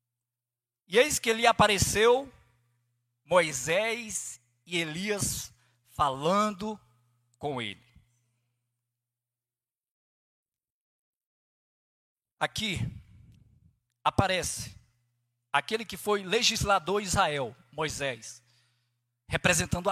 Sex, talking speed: male, 65 wpm